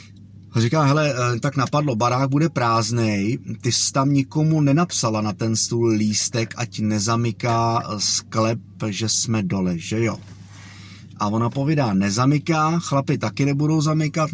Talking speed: 135 wpm